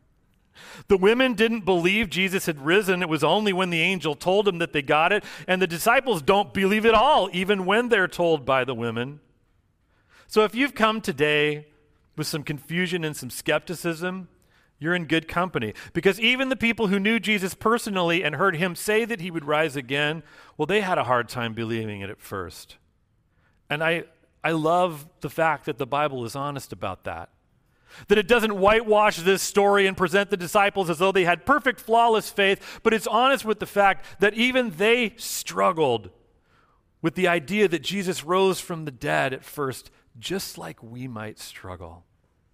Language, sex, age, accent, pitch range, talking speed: English, male, 40-59, American, 140-200 Hz, 185 wpm